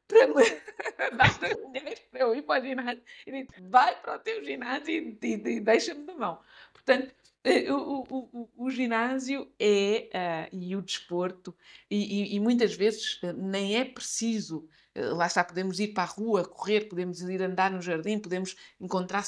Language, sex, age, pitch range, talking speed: Portuguese, female, 50-69, 180-245 Hz, 155 wpm